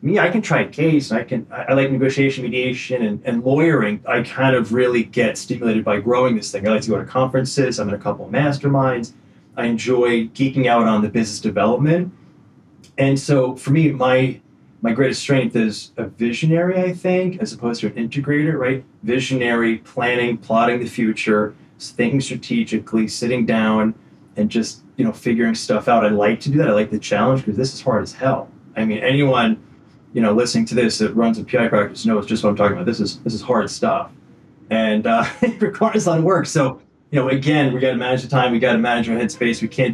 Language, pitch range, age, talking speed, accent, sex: English, 110-135 Hz, 30-49, 220 wpm, American, male